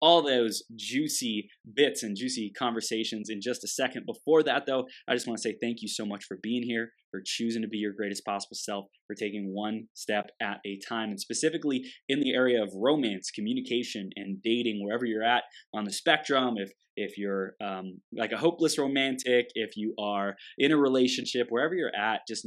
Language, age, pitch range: English, 20-39, 105-135 Hz